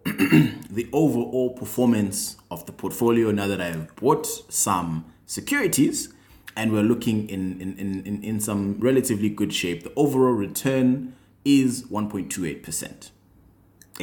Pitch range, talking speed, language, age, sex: 95-125 Hz, 130 wpm, English, 20-39, male